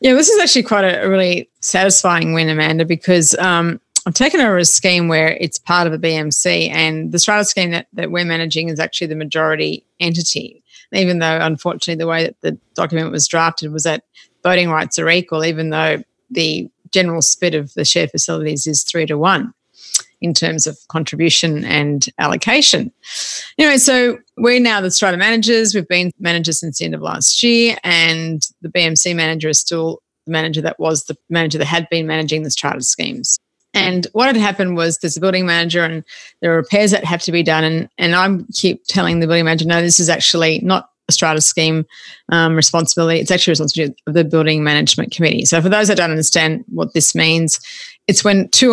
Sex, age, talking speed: female, 30-49, 200 wpm